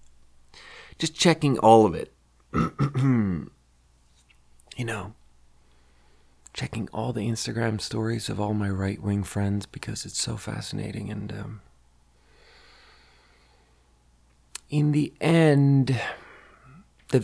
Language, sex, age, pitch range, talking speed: English, male, 30-49, 75-120 Hz, 95 wpm